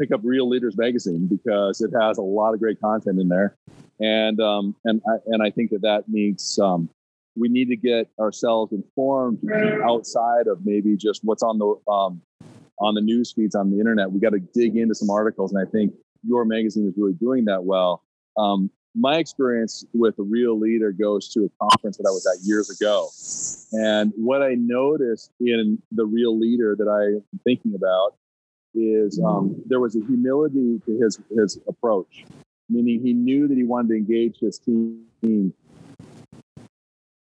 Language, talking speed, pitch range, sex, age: English, 185 wpm, 105-120 Hz, male, 40-59